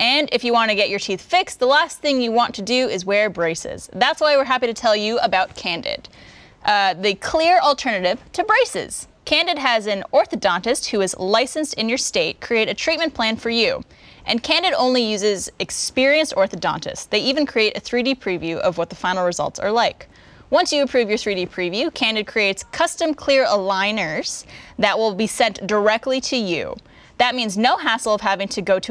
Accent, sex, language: American, female, English